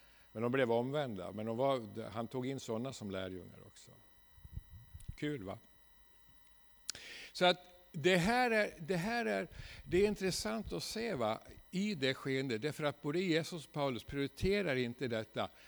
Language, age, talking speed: Swedish, 60-79, 170 wpm